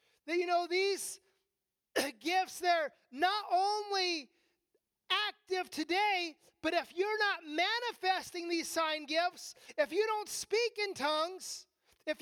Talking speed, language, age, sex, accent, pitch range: 120 wpm, English, 30-49, male, American, 310-390 Hz